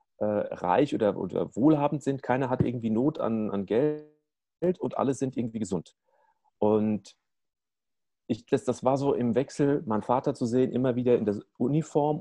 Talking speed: 170 wpm